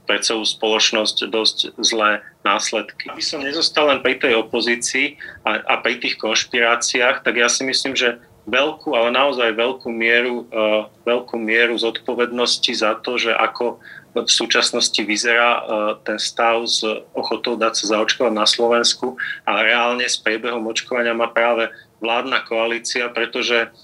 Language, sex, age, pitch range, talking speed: Slovak, male, 40-59, 110-120 Hz, 145 wpm